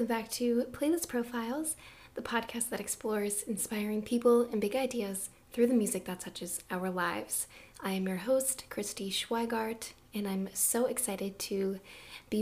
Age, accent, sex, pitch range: 10-29, American, female, 190-230 Hz